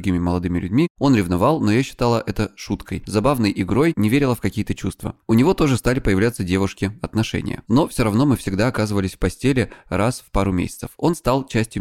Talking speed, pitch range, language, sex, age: 195 wpm, 95-120 Hz, Russian, male, 20-39